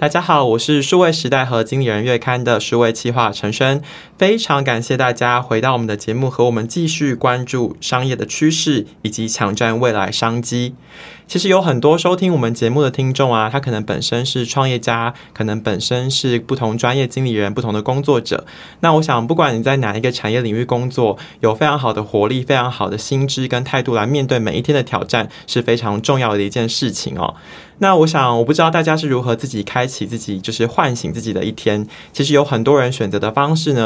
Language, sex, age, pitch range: Chinese, male, 20-39, 115-140 Hz